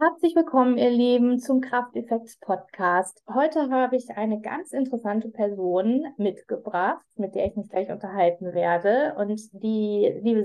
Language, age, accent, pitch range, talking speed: German, 20-39, German, 205-255 Hz, 145 wpm